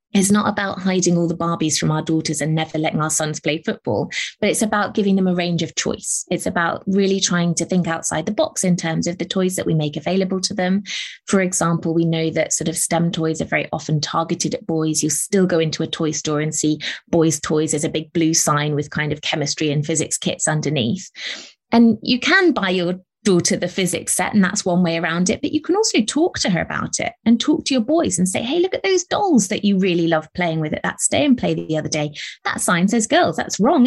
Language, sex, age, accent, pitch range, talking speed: English, female, 20-39, British, 165-225 Hz, 250 wpm